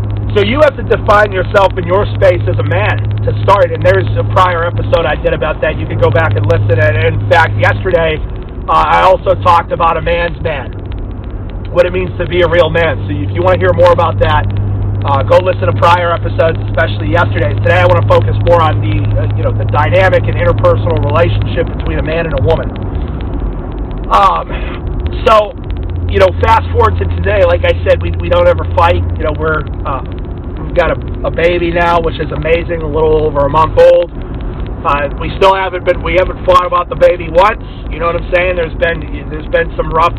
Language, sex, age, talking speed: English, male, 40-59, 215 wpm